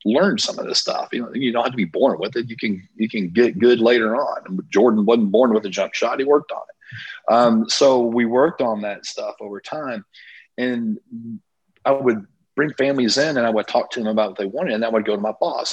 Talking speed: 255 wpm